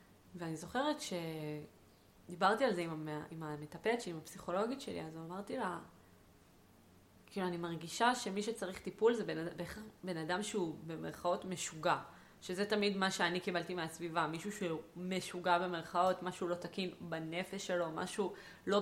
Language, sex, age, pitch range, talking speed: Hebrew, female, 20-39, 160-200 Hz, 145 wpm